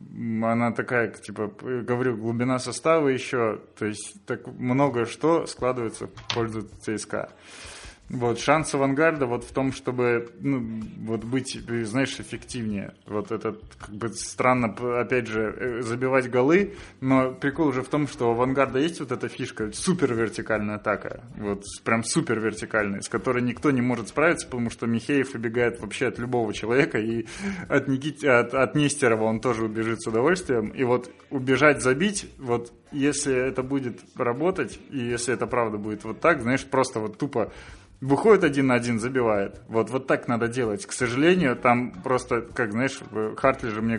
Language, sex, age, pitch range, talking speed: Russian, male, 20-39, 115-135 Hz, 165 wpm